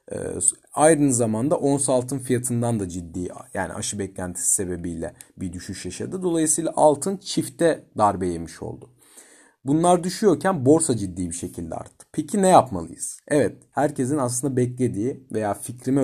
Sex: male